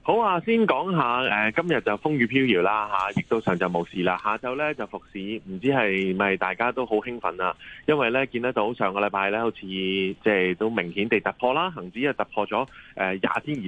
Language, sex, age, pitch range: Chinese, male, 20-39, 95-130 Hz